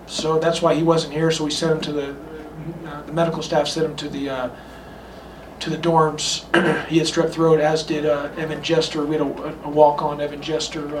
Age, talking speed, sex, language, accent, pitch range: 40-59, 220 wpm, male, English, American, 150-170 Hz